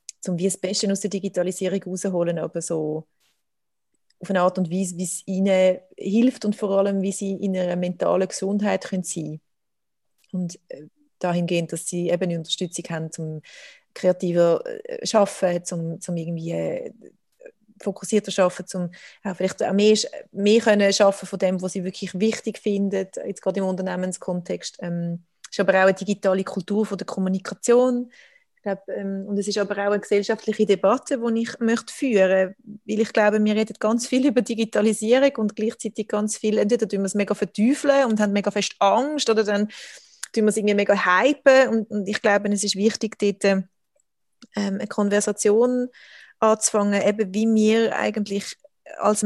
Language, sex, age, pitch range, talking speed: German, female, 30-49, 185-220 Hz, 170 wpm